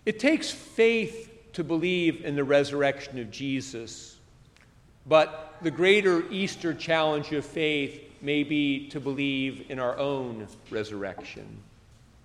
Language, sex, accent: English, male, American